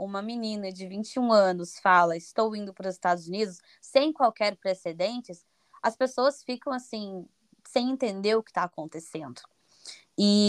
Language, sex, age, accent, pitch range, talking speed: Portuguese, female, 20-39, Brazilian, 180-225 Hz, 150 wpm